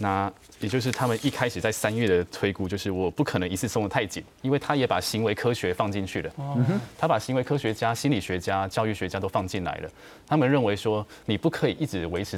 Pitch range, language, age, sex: 95-140 Hz, Chinese, 20-39, male